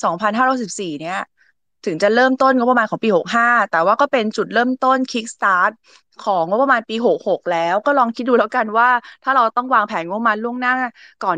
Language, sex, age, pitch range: Thai, female, 20-39, 185-245 Hz